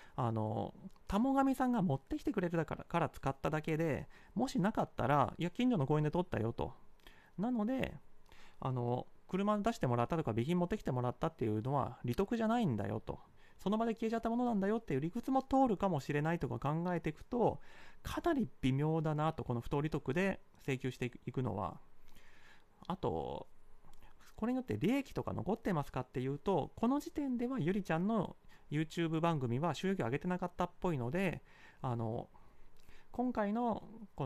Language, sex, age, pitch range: Japanese, male, 30-49, 145-215 Hz